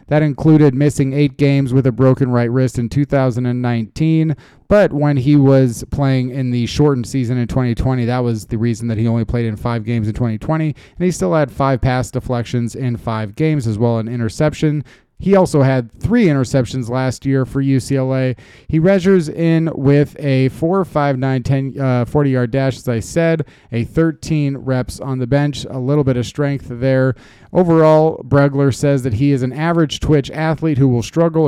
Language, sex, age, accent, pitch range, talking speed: English, male, 30-49, American, 125-155 Hz, 190 wpm